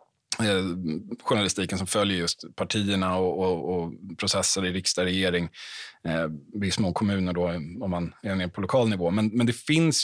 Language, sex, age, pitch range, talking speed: Swedish, male, 30-49, 100-145 Hz, 165 wpm